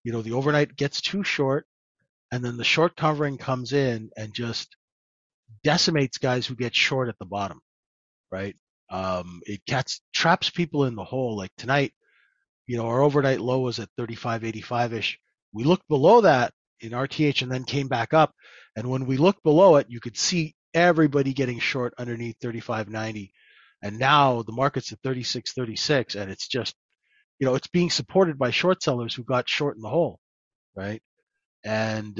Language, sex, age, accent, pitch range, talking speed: English, male, 30-49, American, 110-150 Hz, 170 wpm